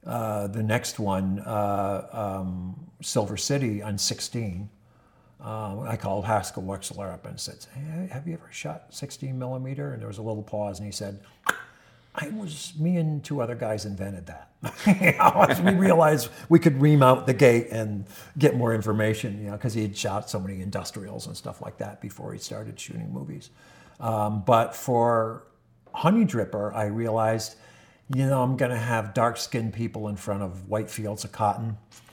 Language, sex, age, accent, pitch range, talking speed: English, male, 50-69, American, 100-125 Hz, 175 wpm